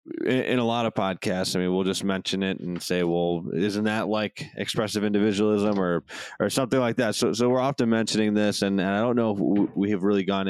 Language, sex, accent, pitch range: English, male, American, 85-105 Hz